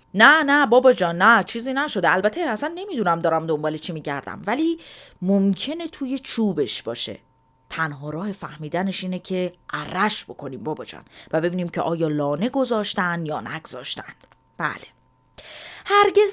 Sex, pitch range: female, 175-265 Hz